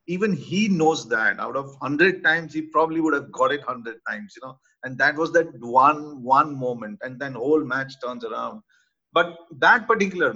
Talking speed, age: 195 wpm, 50-69